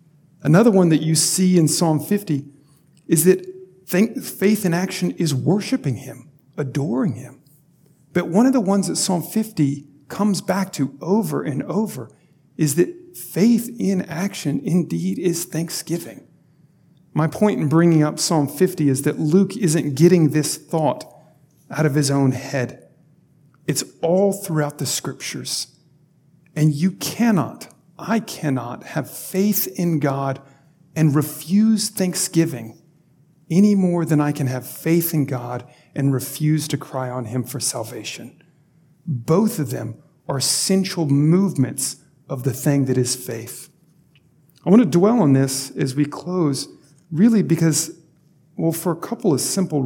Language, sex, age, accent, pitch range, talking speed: English, male, 50-69, American, 145-180 Hz, 145 wpm